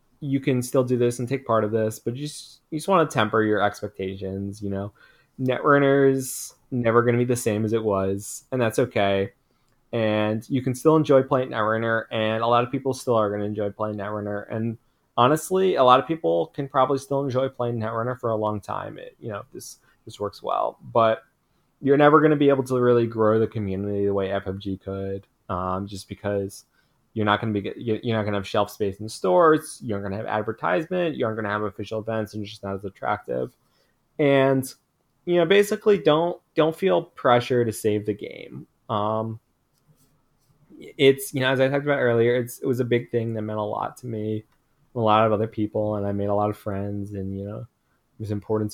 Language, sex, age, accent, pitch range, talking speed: English, male, 20-39, American, 105-135 Hz, 220 wpm